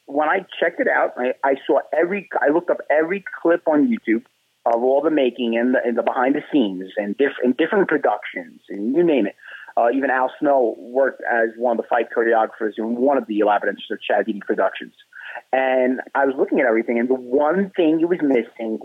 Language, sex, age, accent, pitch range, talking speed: English, male, 30-49, American, 120-170 Hz, 220 wpm